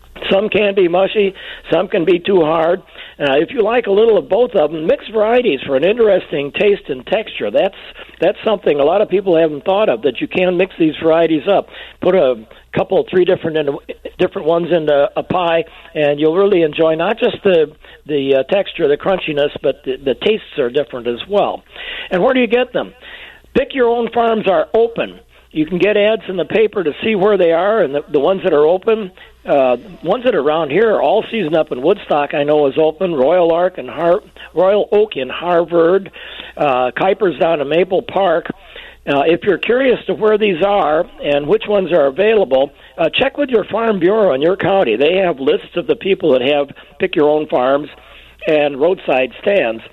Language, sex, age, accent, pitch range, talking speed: English, male, 60-79, American, 155-210 Hz, 205 wpm